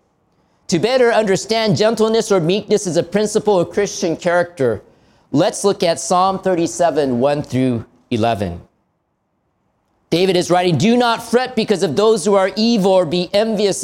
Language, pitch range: Japanese, 145-210 Hz